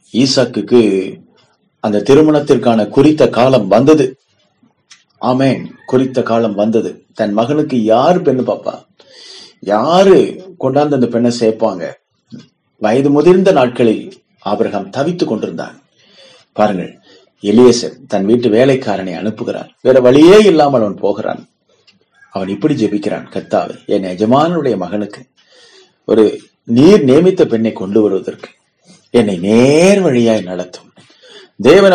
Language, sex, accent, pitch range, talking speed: Tamil, male, native, 100-140 Hz, 105 wpm